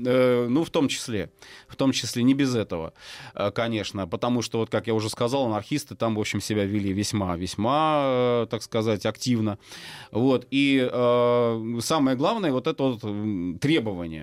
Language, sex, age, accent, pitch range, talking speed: Russian, male, 30-49, native, 105-140 Hz, 160 wpm